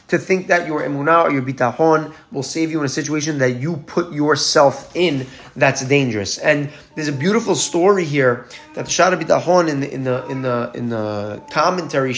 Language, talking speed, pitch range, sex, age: English, 180 wpm, 135-180 Hz, male, 30-49